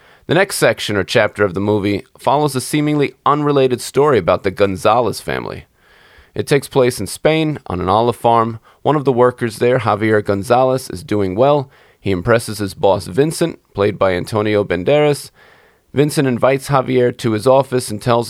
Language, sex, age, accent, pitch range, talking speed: English, male, 30-49, American, 100-130 Hz, 175 wpm